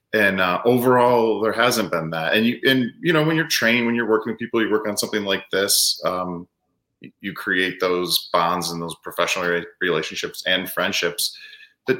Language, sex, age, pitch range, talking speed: English, male, 30-49, 95-125 Hz, 190 wpm